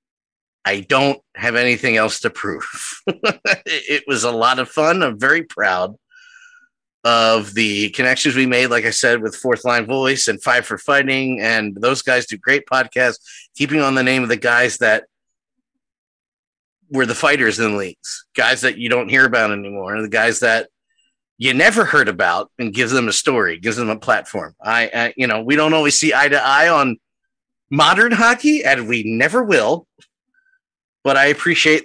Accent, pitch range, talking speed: American, 120-160 Hz, 185 wpm